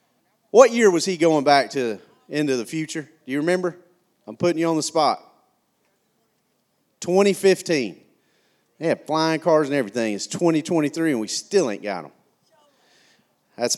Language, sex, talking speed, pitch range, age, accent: English, male, 150 wpm, 130-175 Hz, 40-59, American